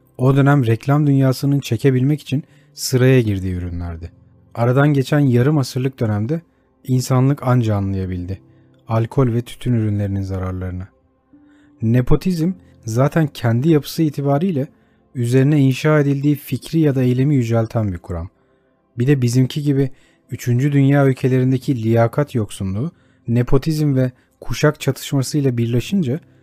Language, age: Turkish, 40-59